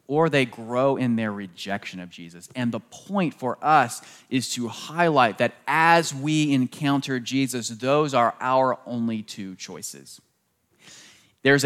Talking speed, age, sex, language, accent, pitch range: 145 wpm, 30-49, male, English, American, 100-140 Hz